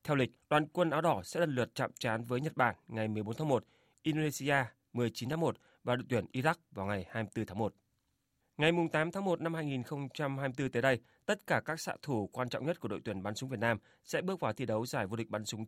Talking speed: 245 wpm